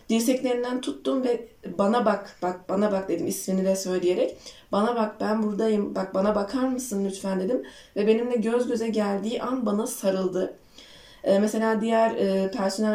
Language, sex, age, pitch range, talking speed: Turkish, female, 20-39, 195-245 Hz, 155 wpm